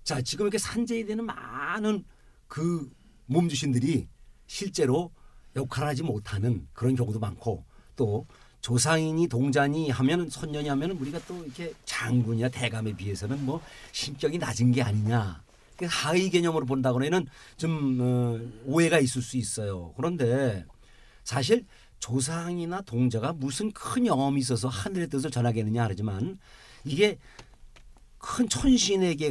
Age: 40-59